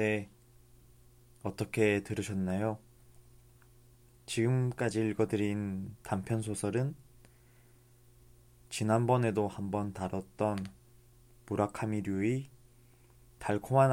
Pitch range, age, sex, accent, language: 100-120 Hz, 20-39, male, native, Korean